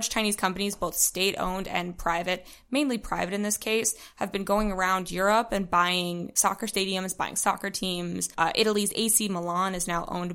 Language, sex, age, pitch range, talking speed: English, female, 20-39, 175-200 Hz, 175 wpm